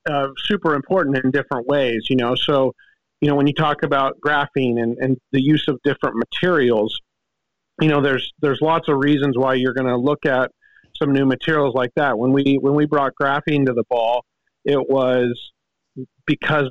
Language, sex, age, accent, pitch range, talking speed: English, male, 40-59, American, 130-150 Hz, 190 wpm